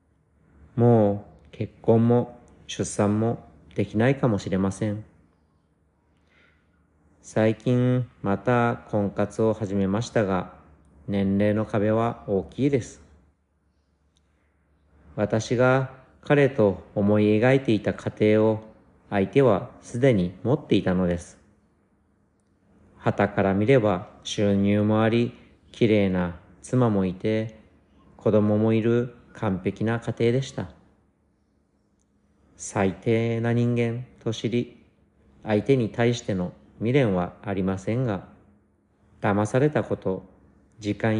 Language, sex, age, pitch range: Japanese, male, 40-59, 90-115 Hz